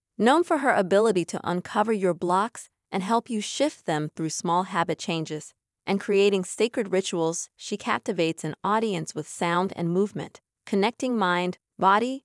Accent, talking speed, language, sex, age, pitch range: American, 155 wpm, English, female, 30-49, 170-225 Hz